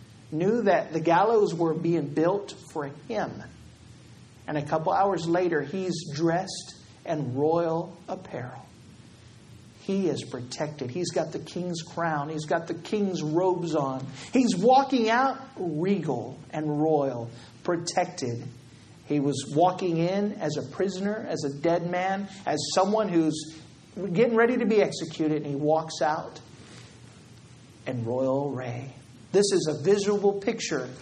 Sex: male